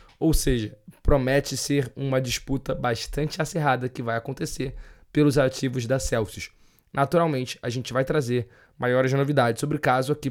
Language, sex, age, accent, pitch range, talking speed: Portuguese, male, 20-39, Brazilian, 125-150 Hz, 150 wpm